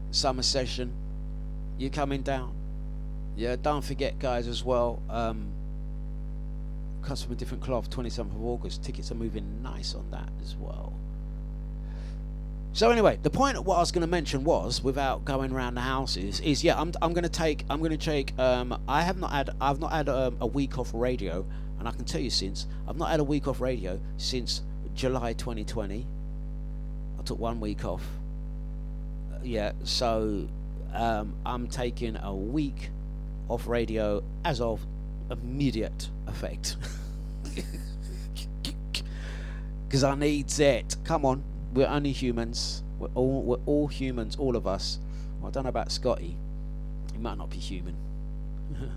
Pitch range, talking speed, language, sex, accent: 95-140 Hz, 160 wpm, English, male, British